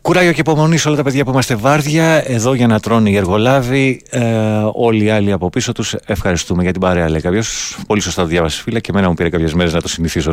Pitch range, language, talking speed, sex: 80-105 Hz, Greek, 245 wpm, male